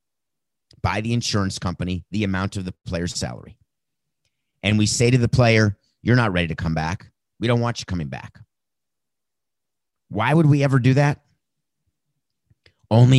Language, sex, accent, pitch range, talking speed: English, male, American, 100-125 Hz, 160 wpm